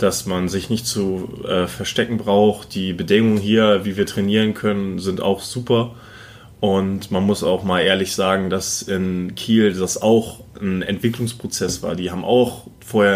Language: German